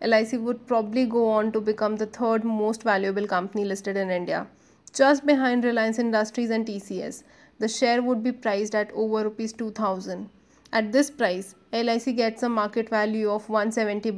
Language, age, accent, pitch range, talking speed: English, 20-39, Indian, 210-245 Hz, 170 wpm